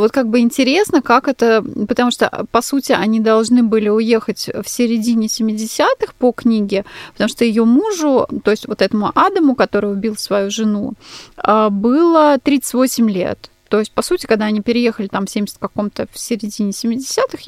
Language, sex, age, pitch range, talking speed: Russian, female, 20-39, 215-255 Hz, 160 wpm